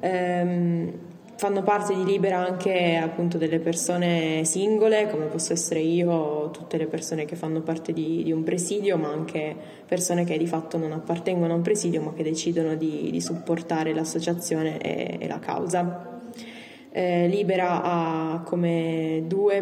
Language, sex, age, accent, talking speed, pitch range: Italian, female, 20-39, native, 155 wpm, 165-180 Hz